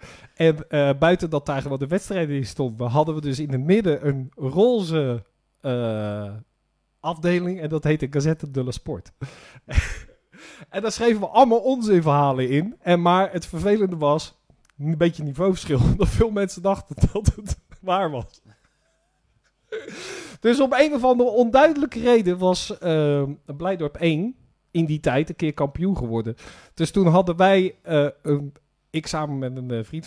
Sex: male